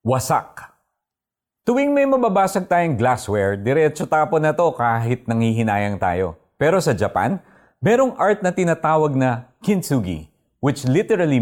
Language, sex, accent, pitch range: Filipino, male, native, 115-165 Hz